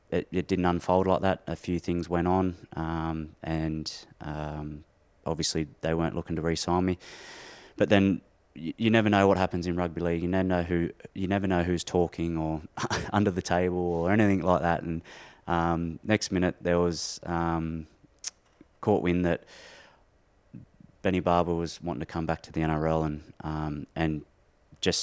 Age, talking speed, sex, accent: 20-39, 175 wpm, male, Australian